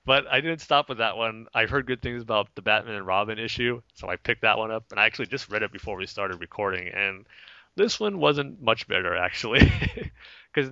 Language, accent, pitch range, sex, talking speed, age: English, American, 105-135 Hz, male, 235 wpm, 30-49